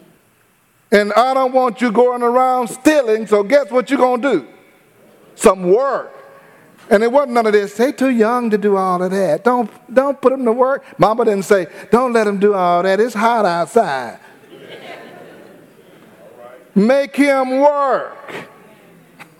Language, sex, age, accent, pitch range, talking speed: English, male, 40-59, American, 200-255 Hz, 160 wpm